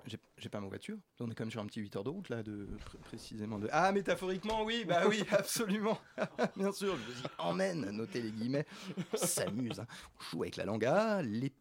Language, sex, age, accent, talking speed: French, male, 30-49, French, 240 wpm